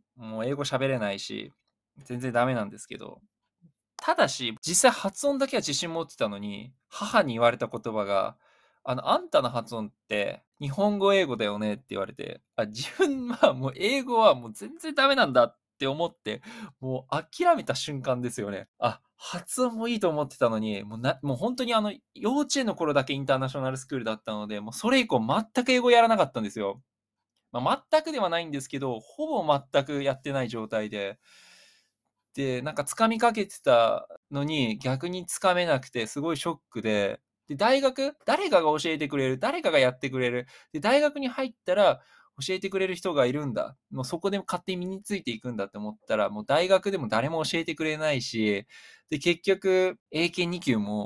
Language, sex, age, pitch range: Japanese, male, 20-39, 120-205 Hz